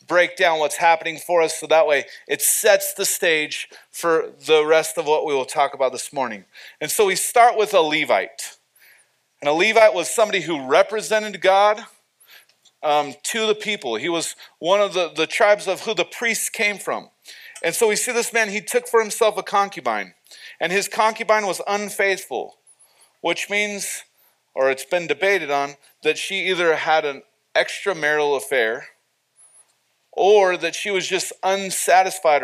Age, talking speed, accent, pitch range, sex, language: 40-59, 170 wpm, American, 165-220 Hz, male, English